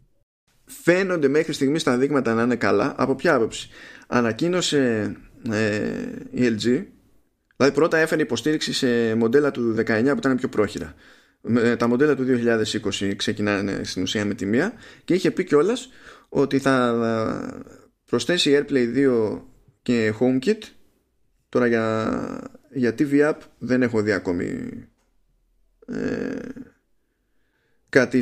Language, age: Greek, 20-39